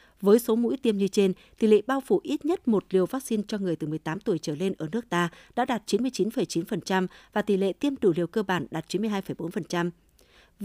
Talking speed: 215 wpm